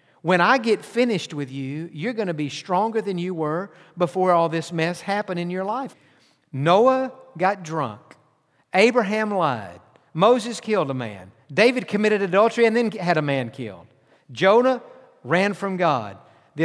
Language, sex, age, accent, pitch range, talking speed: English, male, 50-69, American, 155-210 Hz, 160 wpm